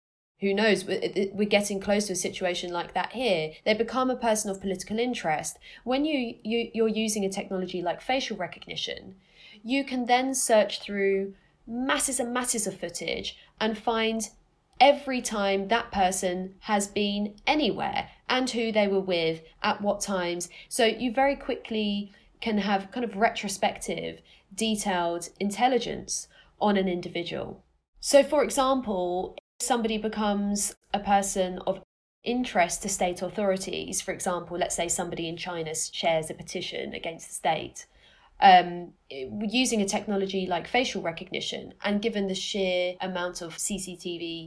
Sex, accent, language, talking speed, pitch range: female, British, English, 145 wpm, 185-225 Hz